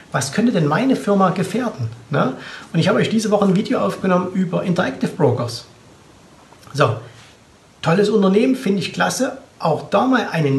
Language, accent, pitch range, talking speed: German, German, 145-200 Hz, 160 wpm